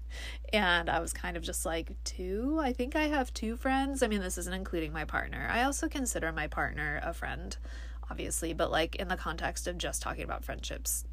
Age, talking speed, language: 20-39, 210 wpm, English